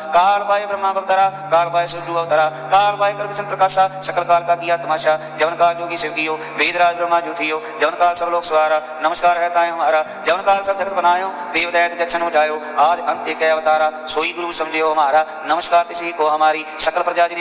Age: 30-49